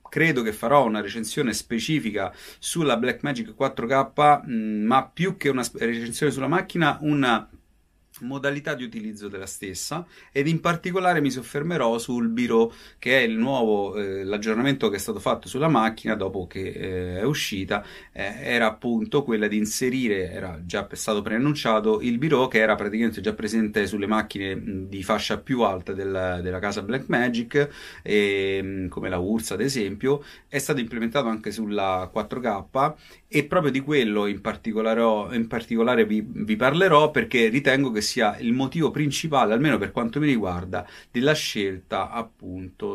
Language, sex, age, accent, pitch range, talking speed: Italian, male, 30-49, native, 100-135 Hz, 160 wpm